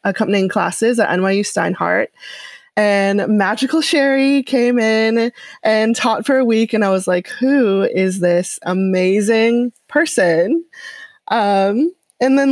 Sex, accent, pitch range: female, American, 190-250 Hz